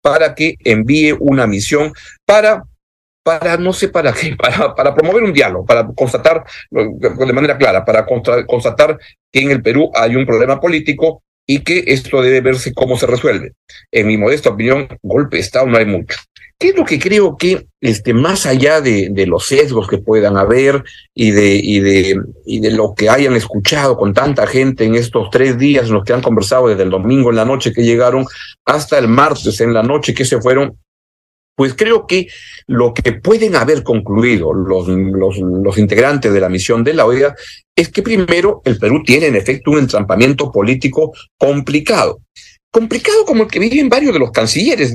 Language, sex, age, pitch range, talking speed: Spanish, male, 50-69, 110-155 Hz, 185 wpm